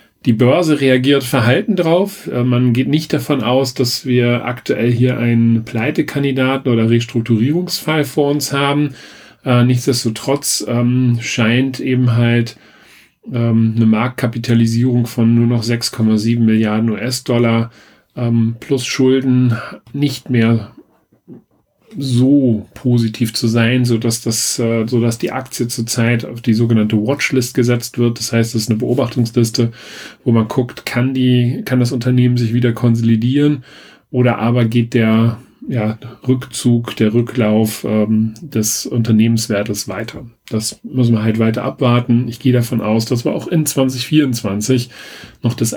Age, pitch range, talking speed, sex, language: 40-59, 115-130 Hz, 130 wpm, male, German